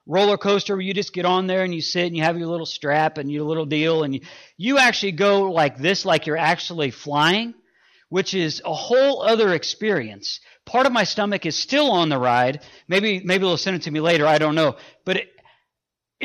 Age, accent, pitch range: 40-59, American, 140-190 Hz